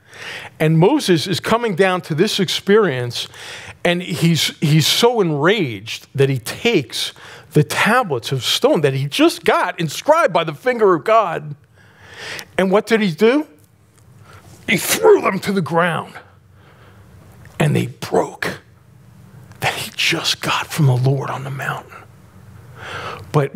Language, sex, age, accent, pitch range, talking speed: English, male, 40-59, American, 130-185 Hz, 140 wpm